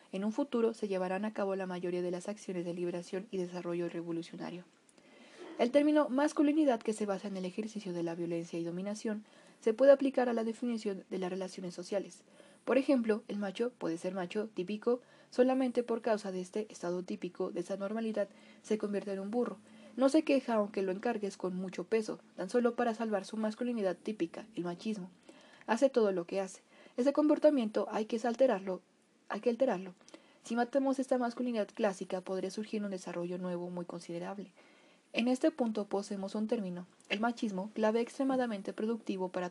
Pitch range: 185-245 Hz